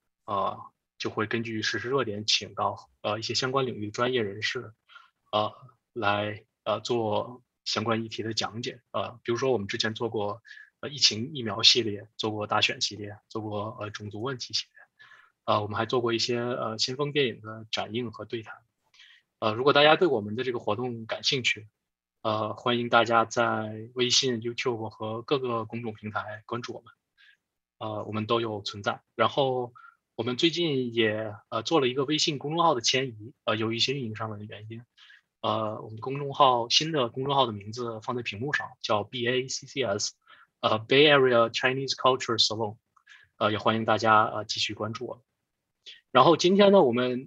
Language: Chinese